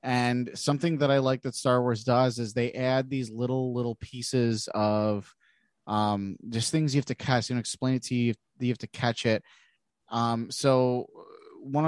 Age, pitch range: 30-49, 115-135 Hz